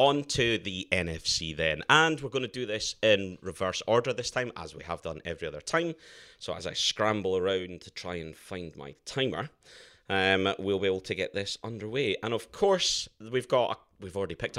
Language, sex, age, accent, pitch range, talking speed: English, male, 30-49, British, 90-120 Hz, 205 wpm